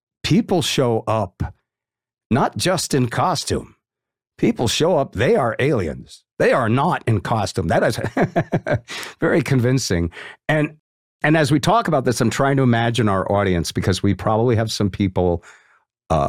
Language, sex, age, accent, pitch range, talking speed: English, male, 50-69, American, 90-120 Hz, 155 wpm